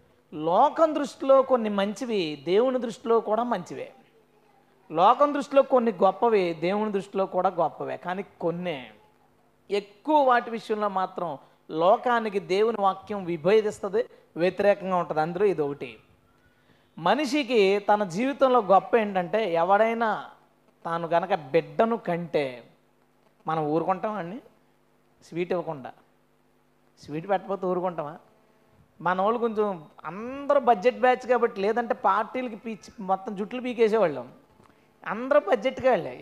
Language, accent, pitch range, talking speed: Telugu, native, 190-250 Hz, 105 wpm